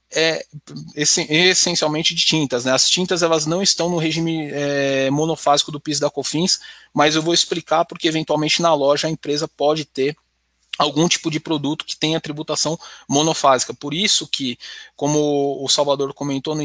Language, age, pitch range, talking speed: Portuguese, 20-39, 140-170 Hz, 160 wpm